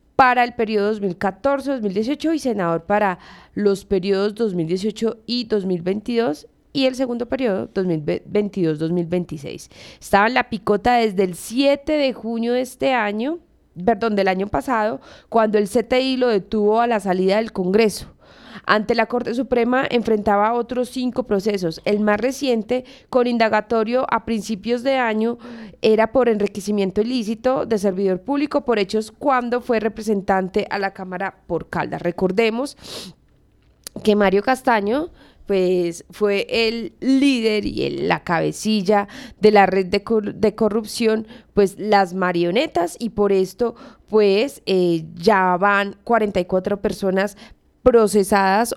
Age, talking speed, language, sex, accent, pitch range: 20-39, 135 wpm, Spanish, female, Colombian, 190-240 Hz